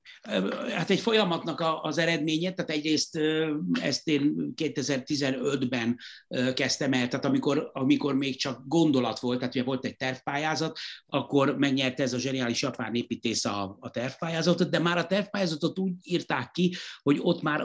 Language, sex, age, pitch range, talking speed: Hungarian, male, 60-79, 125-160 Hz, 150 wpm